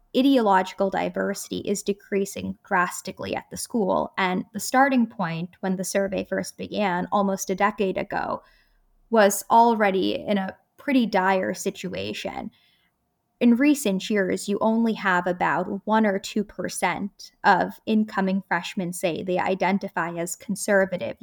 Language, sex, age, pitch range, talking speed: English, female, 10-29, 185-220 Hz, 130 wpm